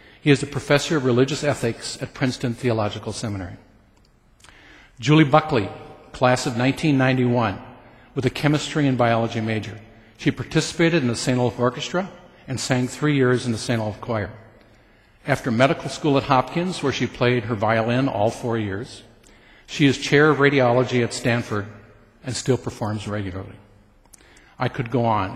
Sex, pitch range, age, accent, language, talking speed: male, 110-140 Hz, 50-69, American, English, 155 wpm